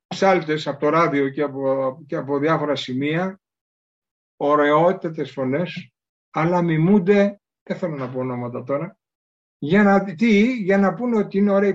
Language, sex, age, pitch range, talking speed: Greek, male, 60-79, 135-200 Hz, 140 wpm